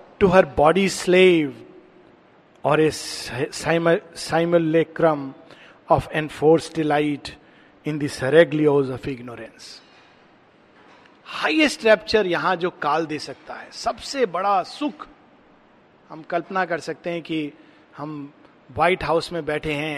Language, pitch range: Hindi, 160-220 Hz